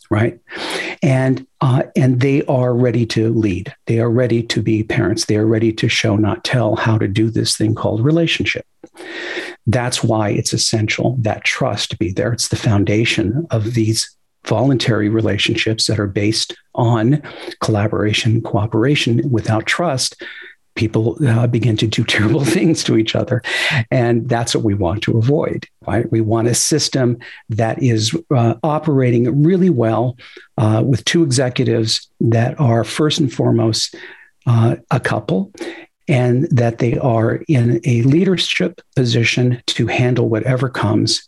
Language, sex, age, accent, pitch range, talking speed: English, male, 50-69, American, 110-130 Hz, 150 wpm